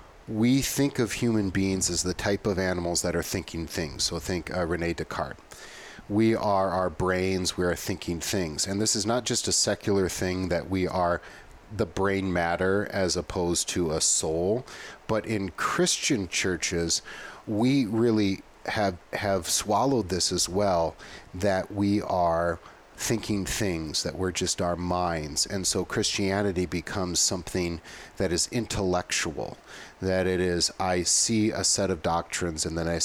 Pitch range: 85-105 Hz